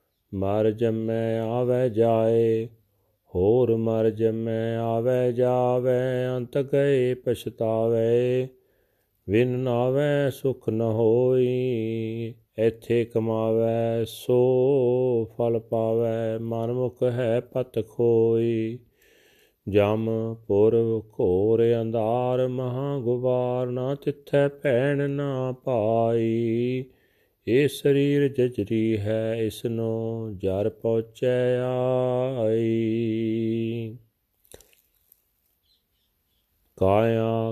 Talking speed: 75 wpm